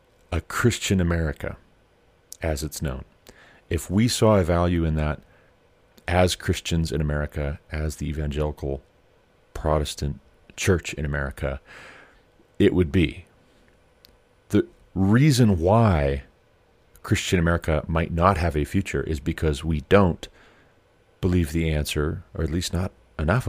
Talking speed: 125 wpm